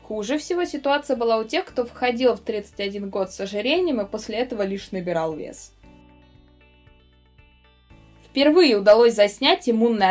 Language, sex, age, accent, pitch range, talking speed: Russian, female, 20-39, native, 185-245 Hz, 135 wpm